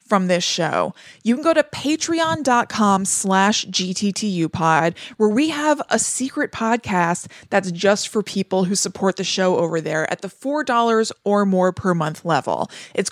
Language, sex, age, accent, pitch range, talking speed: English, female, 20-39, American, 185-230 Hz, 155 wpm